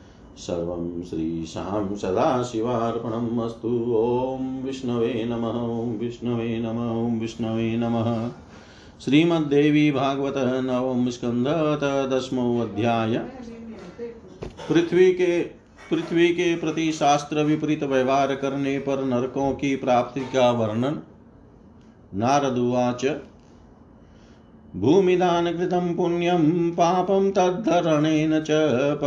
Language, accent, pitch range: Hindi, native, 115-150 Hz